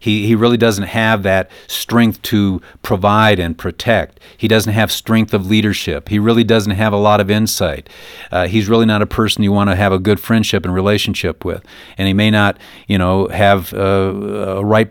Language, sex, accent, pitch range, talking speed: English, male, American, 100-125 Hz, 205 wpm